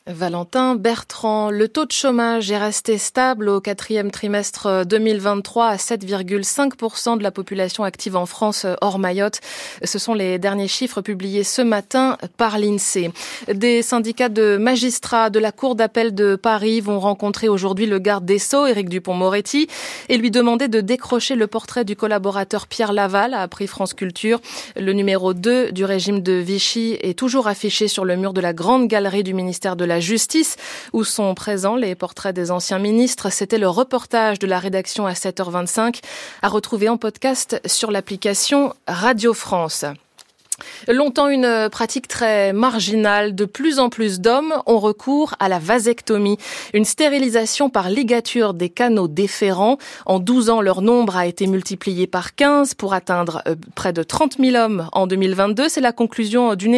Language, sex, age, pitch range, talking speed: French, female, 20-39, 195-240 Hz, 165 wpm